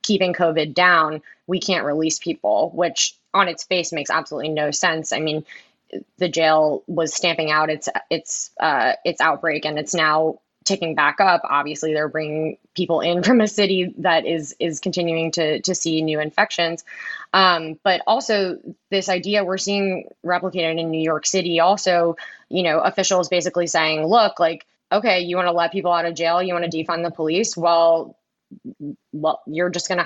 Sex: female